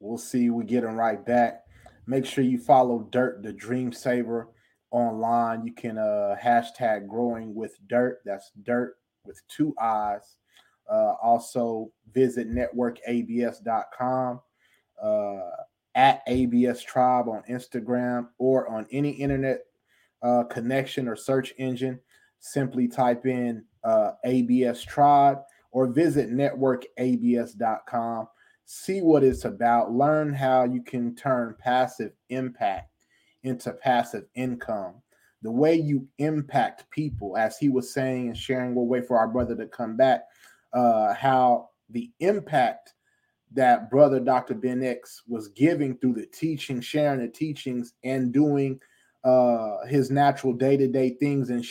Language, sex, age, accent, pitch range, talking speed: English, male, 20-39, American, 120-140 Hz, 135 wpm